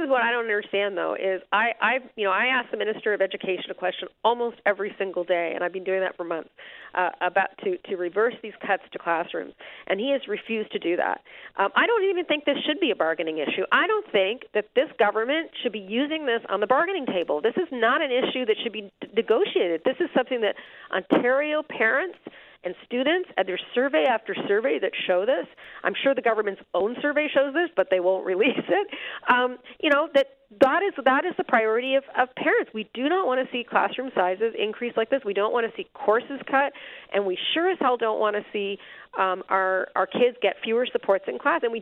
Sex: female